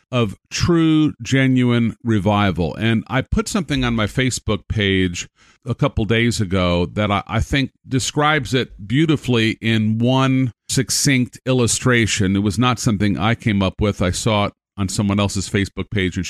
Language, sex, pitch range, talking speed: English, male, 110-150 Hz, 160 wpm